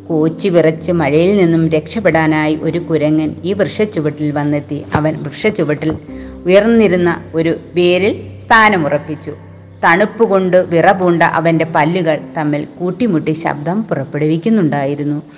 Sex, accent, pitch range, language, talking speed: female, native, 155-195 Hz, Malayalam, 95 wpm